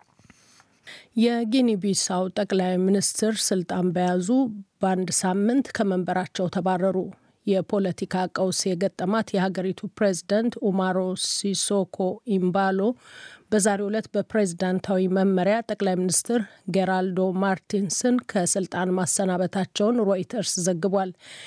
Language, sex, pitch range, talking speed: Amharic, female, 185-205 Hz, 80 wpm